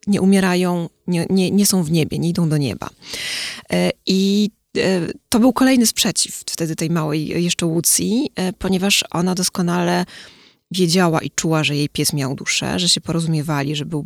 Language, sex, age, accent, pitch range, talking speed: Polish, female, 20-39, native, 150-185 Hz, 160 wpm